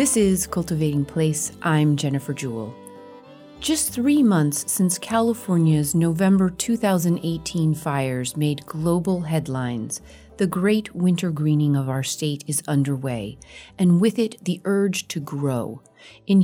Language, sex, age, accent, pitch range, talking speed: English, female, 30-49, American, 150-190 Hz, 130 wpm